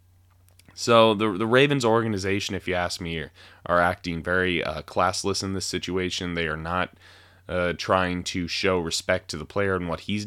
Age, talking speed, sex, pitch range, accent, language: 20-39, 185 wpm, male, 90-105 Hz, American, English